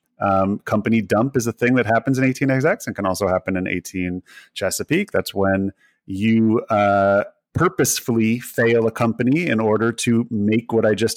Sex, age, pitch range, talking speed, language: male, 30-49, 105-140 Hz, 170 wpm, English